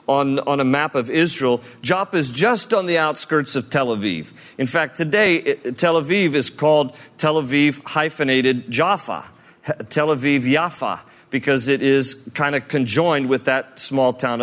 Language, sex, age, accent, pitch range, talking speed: English, male, 50-69, American, 125-150 Hz, 170 wpm